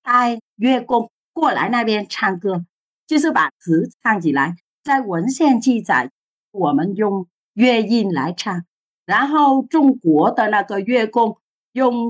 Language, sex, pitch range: Chinese, female, 170-245 Hz